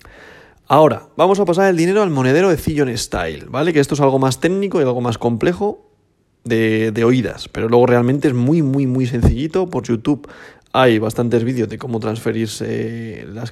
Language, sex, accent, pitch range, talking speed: Spanish, male, Spanish, 115-140 Hz, 185 wpm